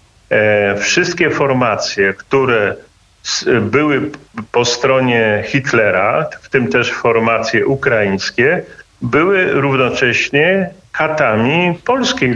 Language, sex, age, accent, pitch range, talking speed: Polish, male, 50-69, native, 115-145 Hz, 80 wpm